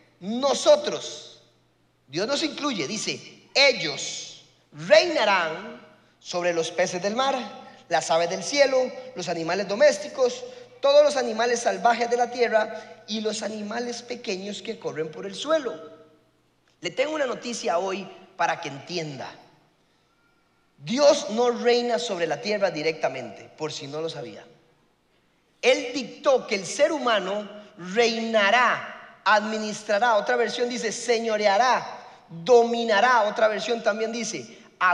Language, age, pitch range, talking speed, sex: Spanish, 30-49, 190-265 Hz, 125 wpm, male